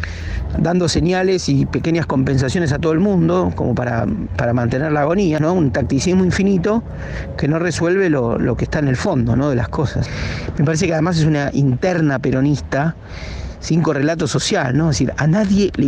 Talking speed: 190 wpm